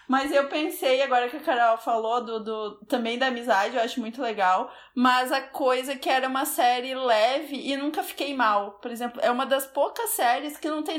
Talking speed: 215 wpm